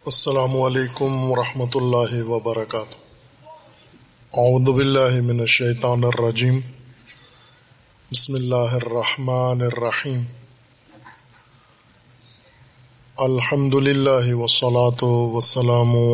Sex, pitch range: male, 120-125 Hz